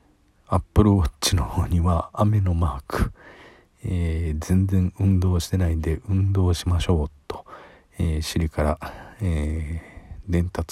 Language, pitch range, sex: Japanese, 85-100 Hz, male